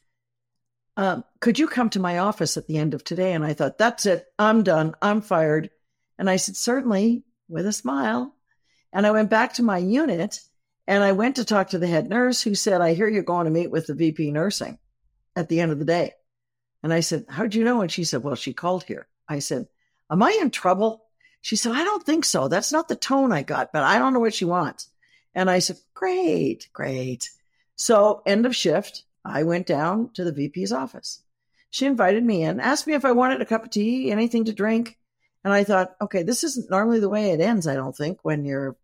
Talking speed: 230 wpm